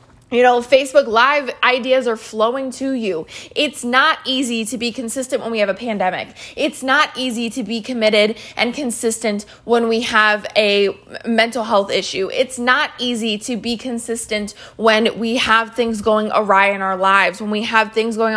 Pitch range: 210-255 Hz